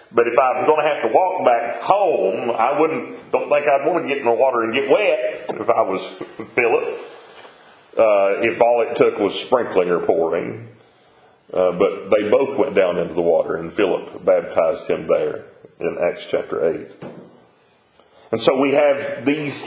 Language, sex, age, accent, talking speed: English, male, 40-59, American, 185 wpm